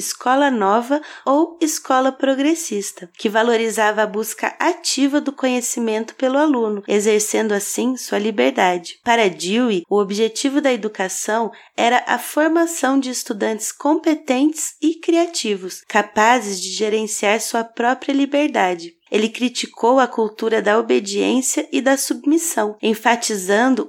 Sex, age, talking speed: female, 30-49, 120 wpm